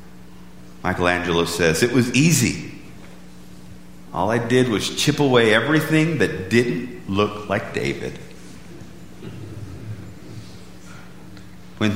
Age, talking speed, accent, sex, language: 50-69, 90 wpm, American, male, English